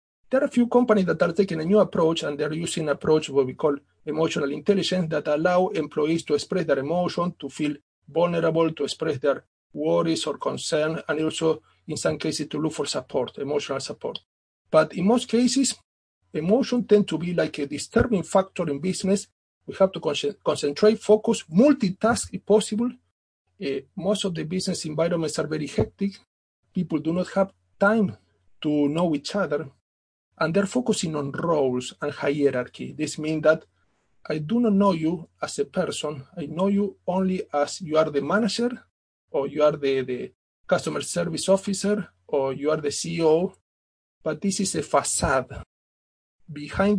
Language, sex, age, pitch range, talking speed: English, male, 50-69, 145-195 Hz, 170 wpm